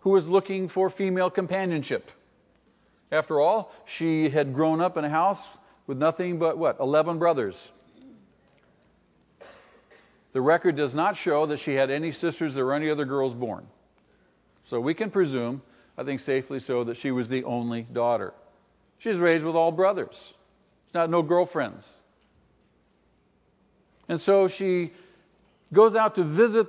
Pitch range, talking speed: 155-200 Hz, 150 wpm